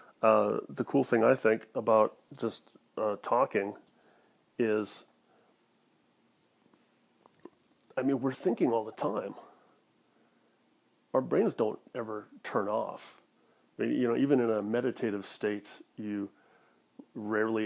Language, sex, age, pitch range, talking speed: English, male, 40-59, 110-125 Hz, 120 wpm